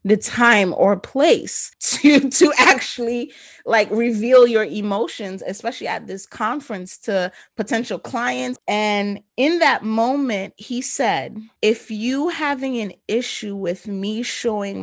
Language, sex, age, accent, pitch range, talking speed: English, female, 30-49, American, 190-235 Hz, 130 wpm